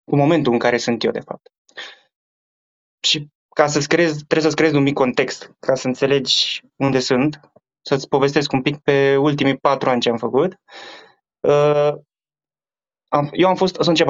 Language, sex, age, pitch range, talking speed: Romanian, male, 20-39, 130-150 Hz, 165 wpm